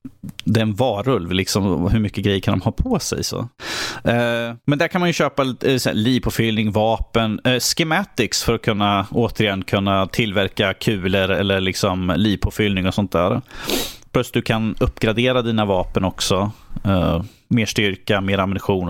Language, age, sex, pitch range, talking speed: Swedish, 30-49, male, 100-130 Hz, 145 wpm